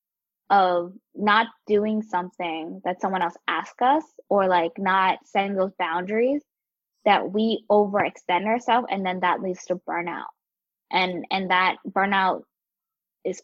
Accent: American